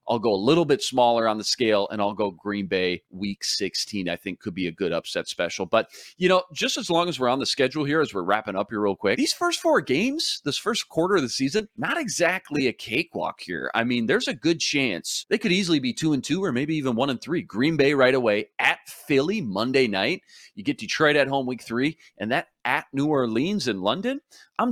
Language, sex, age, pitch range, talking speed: English, male, 30-49, 105-150 Hz, 245 wpm